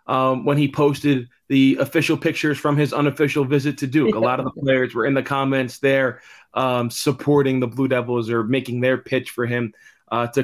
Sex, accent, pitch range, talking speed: male, American, 120-145 Hz, 205 wpm